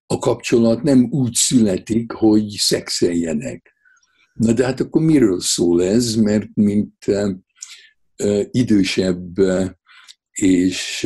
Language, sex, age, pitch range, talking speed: Hungarian, male, 60-79, 95-135 Hz, 100 wpm